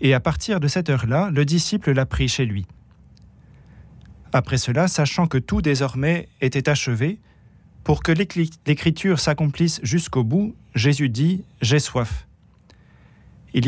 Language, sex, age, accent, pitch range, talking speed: French, male, 40-59, French, 130-165 Hz, 135 wpm